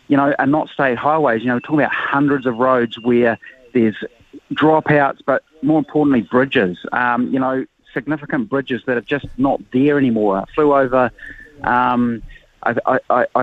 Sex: male